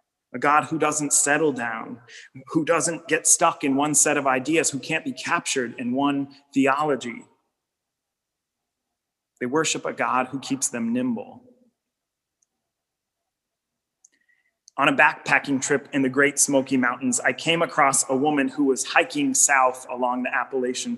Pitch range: 130-160 Hz